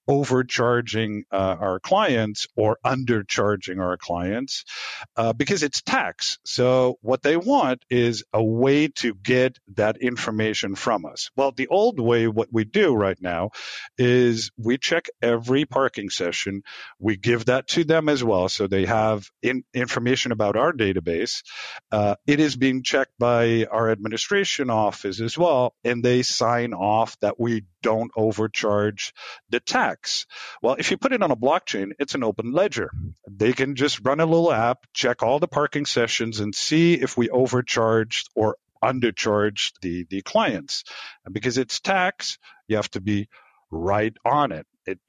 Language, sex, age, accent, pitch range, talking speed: English, male, 50-69, American, 105-130 Hz, 160 wpm